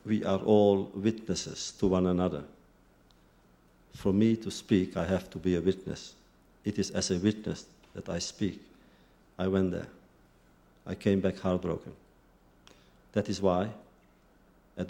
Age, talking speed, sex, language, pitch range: 50-69, 145 wpm, male, English, 80-100 Hz